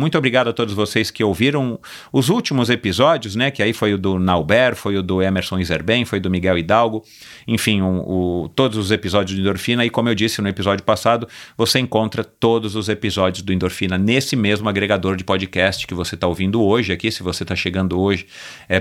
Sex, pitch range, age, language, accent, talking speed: male, 95-120 Hz, 40-59, Portuguese, Brazilian, 205 wpm